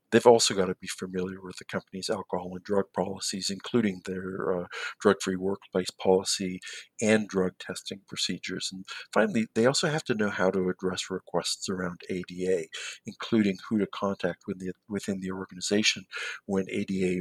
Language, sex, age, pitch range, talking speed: English, male, 50-69, 95-105 Hz, 160 wpm